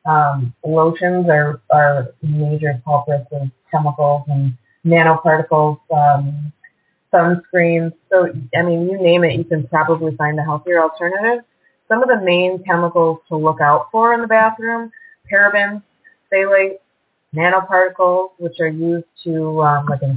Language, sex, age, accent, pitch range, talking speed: English, female, 30-49, American, 150-180 Hz, 140 wpm